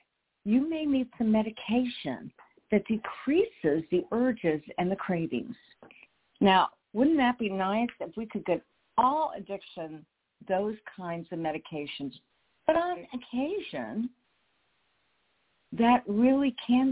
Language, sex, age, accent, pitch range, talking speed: English, female, 60-79, American, 180-255 Hz, 115 wpm